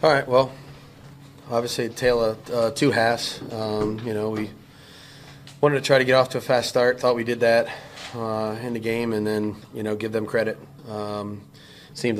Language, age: English, 30-49